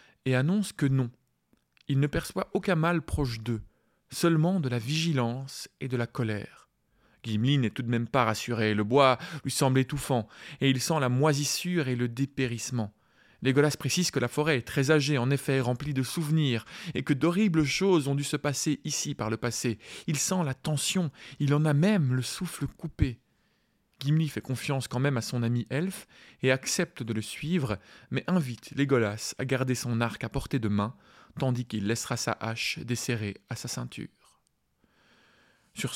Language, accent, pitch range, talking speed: French, French, 120-150 Hz, 185 wpm